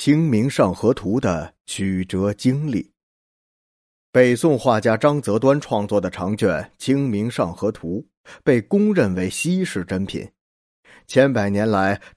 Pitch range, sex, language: 100-145 Hz, male, Chinese